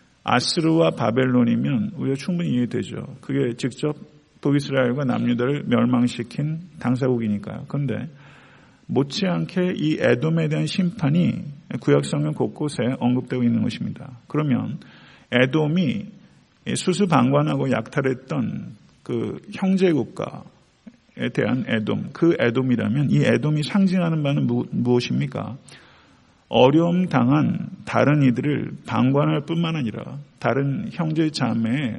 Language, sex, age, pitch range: Korean, male, 40-59, 120-160 Hz